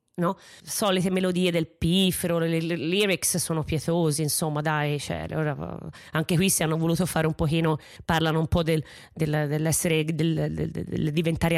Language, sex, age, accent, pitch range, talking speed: Italian, female, 20-39, native, 155-190 Hz, 175 wpm